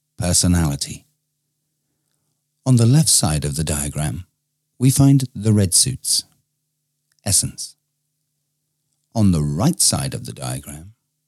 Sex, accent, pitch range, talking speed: male, British, 100-150 Hz, 110 wpm